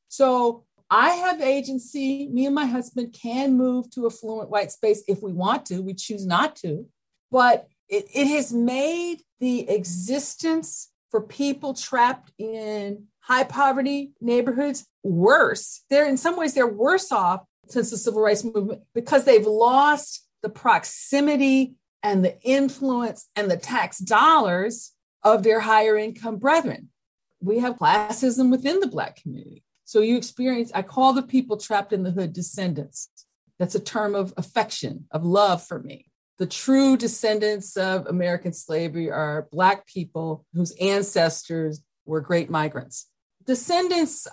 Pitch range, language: 185-265 Hz, English